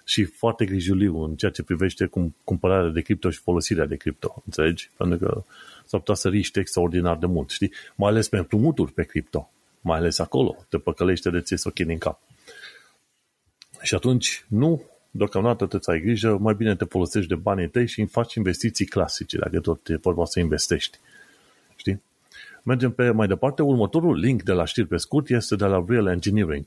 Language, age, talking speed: Romanian, 30-49, 195 wpm